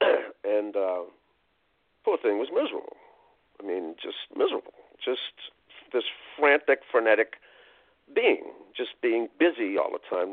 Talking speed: 120 wpm